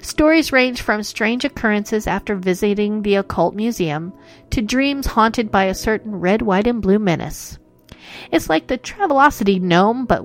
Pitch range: 180-255 Hz